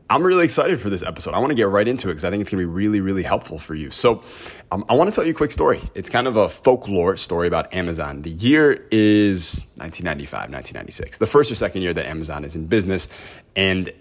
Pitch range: 90-110 Hz